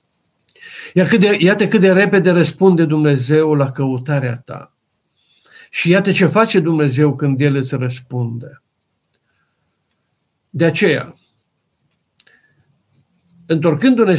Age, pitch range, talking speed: 50-69, 135-185 Hz, 90 wpm